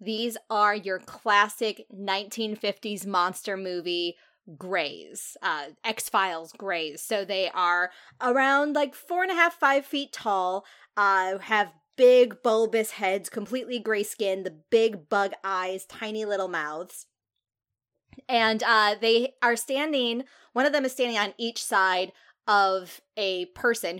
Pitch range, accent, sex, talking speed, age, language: 185-235 Hz, American, female, 135 wpm, 20-39, English